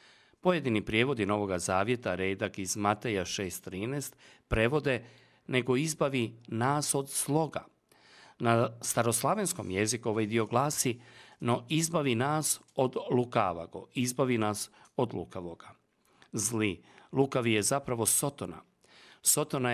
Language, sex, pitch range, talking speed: Croatian, male, 105-135 Hz, 105 wpm